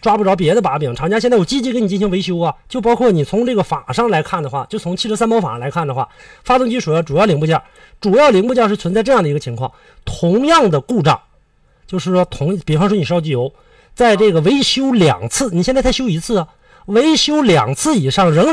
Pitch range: 155-230 Hz